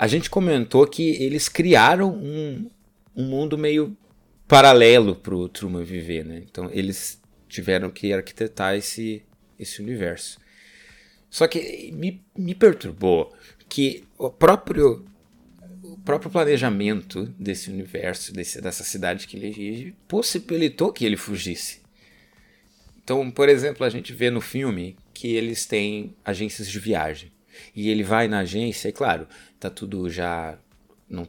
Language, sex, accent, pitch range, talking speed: Portuguese, male, Brazilian, 90-145 Hz, 135 wpm